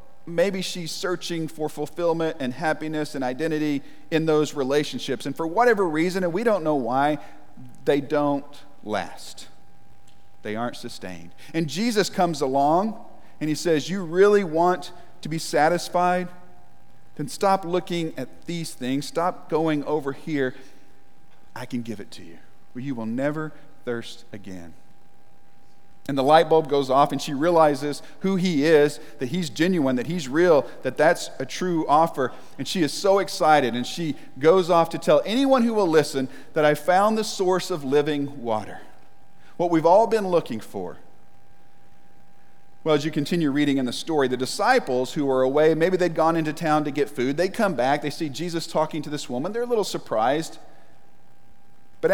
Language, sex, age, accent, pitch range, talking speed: English, male, 40-59, American, 135-175 Hz, 175 wpm